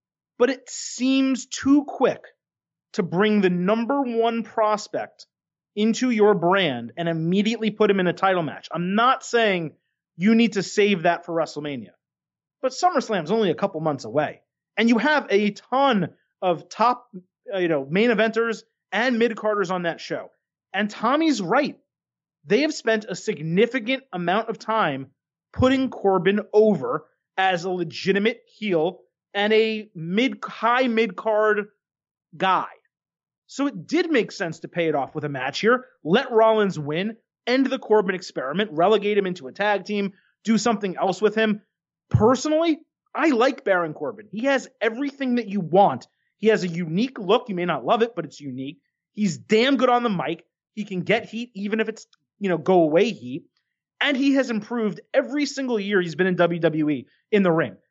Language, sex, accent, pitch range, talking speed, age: English, male, American, 180-235 Hz, 175 wpm, 30-49